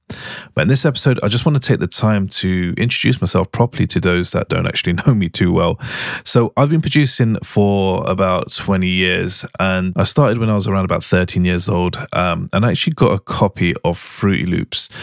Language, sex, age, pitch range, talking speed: English, male, 30-49, 90-115 Hz, 210 wpm